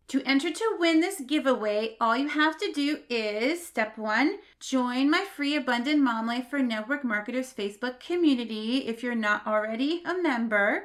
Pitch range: 230-300 Hz